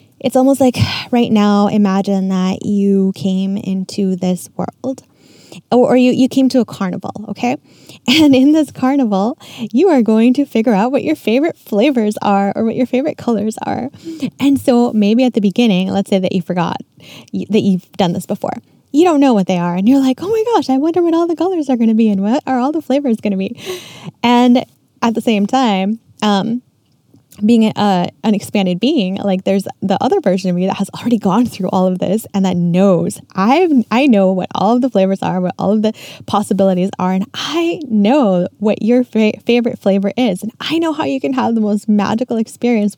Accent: American